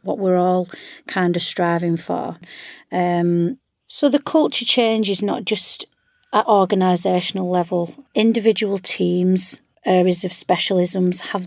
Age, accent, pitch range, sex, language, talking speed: 40-59, British, 180-210 Hz, female, English, 125 wpm